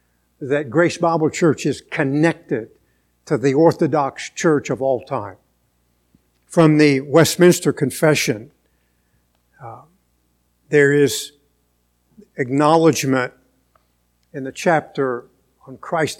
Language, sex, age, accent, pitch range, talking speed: English, male, 60-79, American, 110-175 Hz, 95 wpm